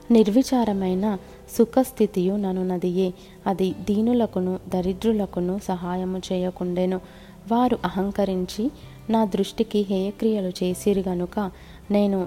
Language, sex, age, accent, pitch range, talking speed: Telugu, female, 30-49, native, 180-205 Hz, 85 wpm